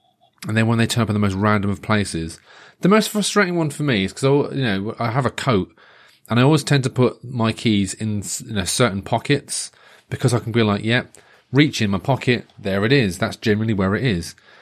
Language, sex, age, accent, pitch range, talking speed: English, male, 30-49, British, 95-115 Hz, 240 wpm